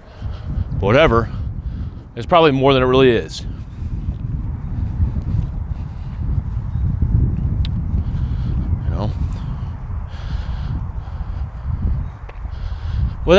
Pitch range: 100-135 Hz